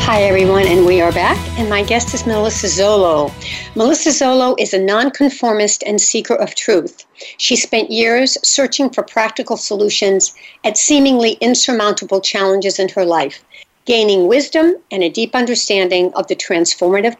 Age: 60-79